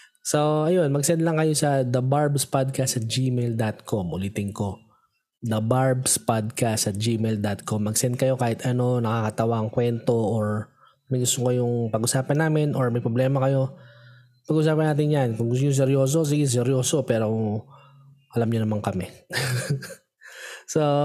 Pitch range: 120-150 Hz